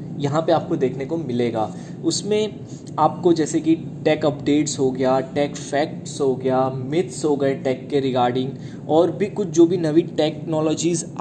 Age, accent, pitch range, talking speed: 20-39, native, 135-160 Hz, 165 wpm